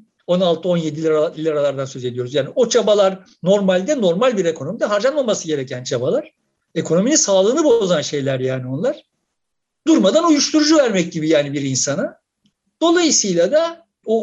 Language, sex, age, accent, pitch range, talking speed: Turkish, male, 60-79, native, 180-300 Hz, 125 wpm